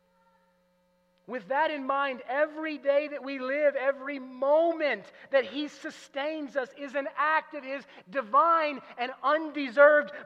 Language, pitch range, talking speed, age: English, 180-290 Hz, 135 wpm, 30-49